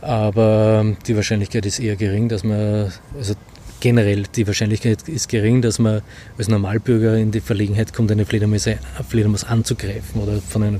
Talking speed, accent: 155 wpm, Austrian